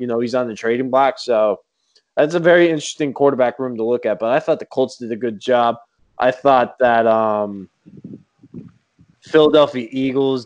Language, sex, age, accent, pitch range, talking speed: English, male, 20-39, American, 115-160 Hz, 185 wpm